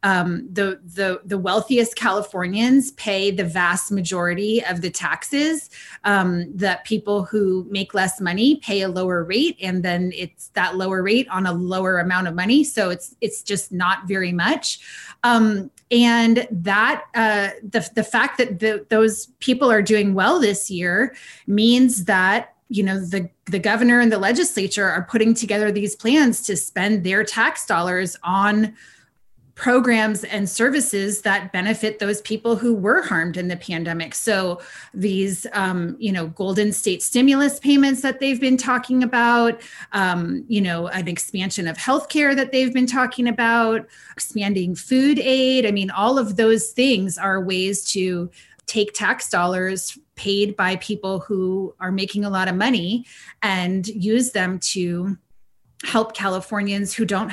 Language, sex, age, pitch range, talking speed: English, female, 30-49, 185-235 Hz, 160 wpm